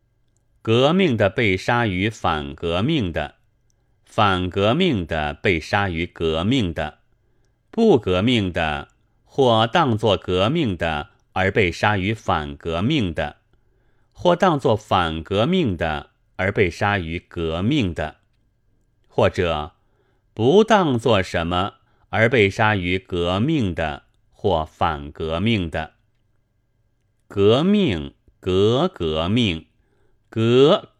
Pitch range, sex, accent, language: 90-120 Hz, male, native, Chinese